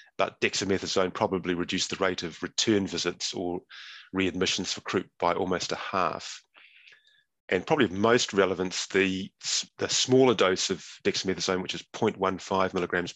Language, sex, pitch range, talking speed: English, male, 90-95 Hz, 145 wpm